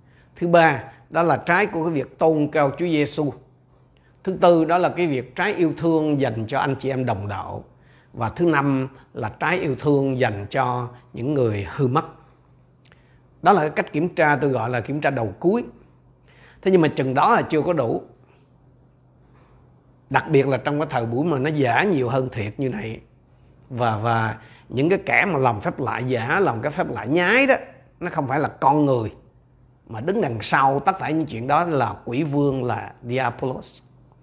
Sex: male